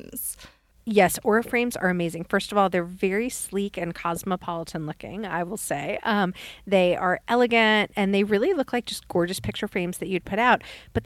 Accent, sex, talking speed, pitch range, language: American, female, 190 wpm, 175-210 Hz, English